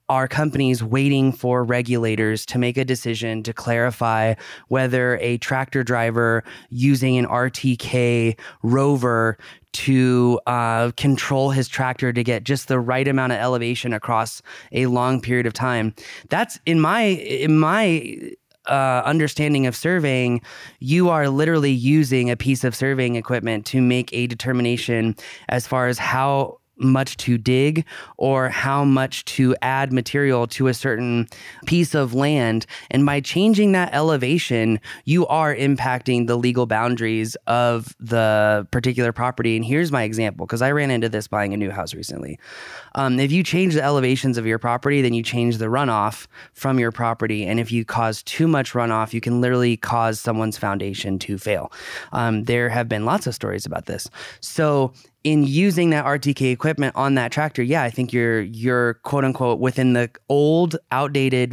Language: English